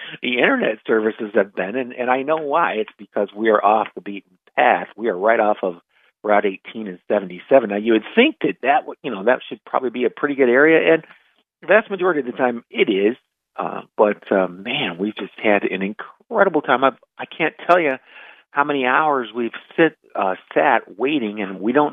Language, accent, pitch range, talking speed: English, American, 105-140 Hz, 215 wpm